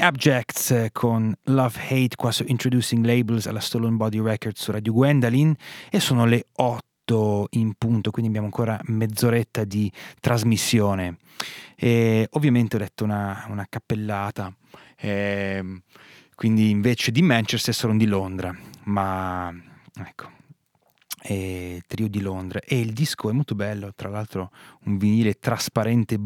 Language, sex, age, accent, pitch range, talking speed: Italian, male, 30-49, native, 100-120 Hz, 135 wpm